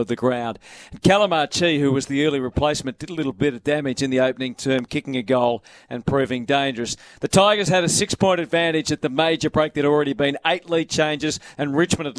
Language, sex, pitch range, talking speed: English, male, 135-160 Hz, 225 wpm